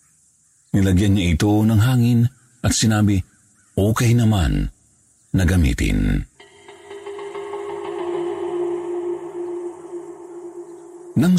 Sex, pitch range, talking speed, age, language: male, 80-125 Hz, 65 wpm, 50-69, Filipino